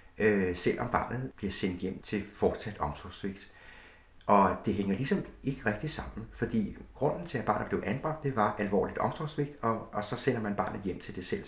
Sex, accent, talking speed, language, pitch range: male, native, 195 wpm, Danish, 90-115 Hz